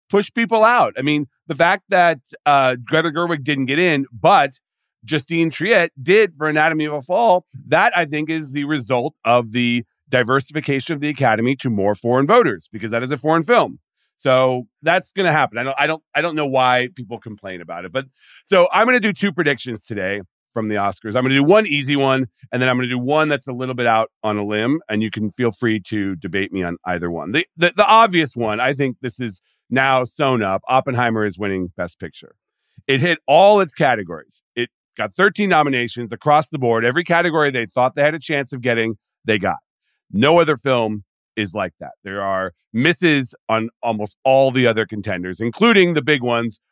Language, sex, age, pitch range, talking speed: English, male, 40-59, 115-155 Hz, 215 wpm